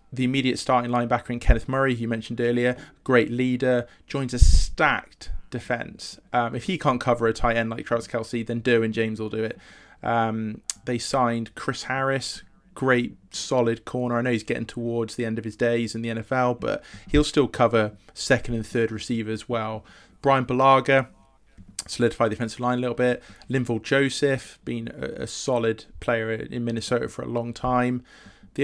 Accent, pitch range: British, 115-125 Hz